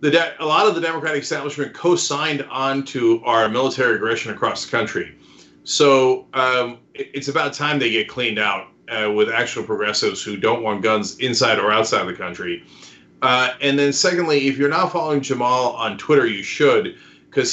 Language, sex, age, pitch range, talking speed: English, male, 40-59, 120-185 Hz, 180 wpm